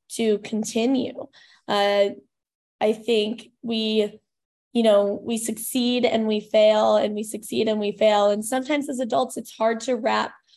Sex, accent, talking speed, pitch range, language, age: female, American, 155 wpm, 210-235 Hz, English, 10-29